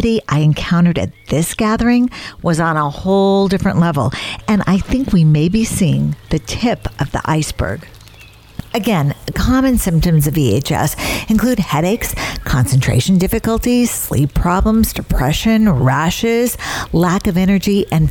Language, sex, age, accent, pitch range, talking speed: English, female, 50-69, American, 150-200 Hz, 135 wpm